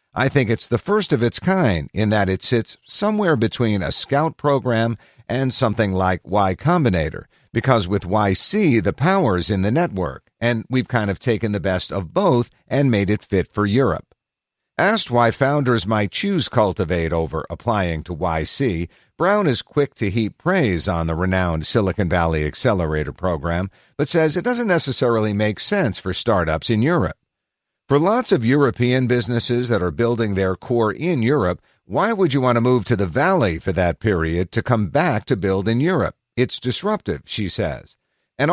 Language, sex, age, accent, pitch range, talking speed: English, male, 50-69, American, 95-135 Hz, 180 wpm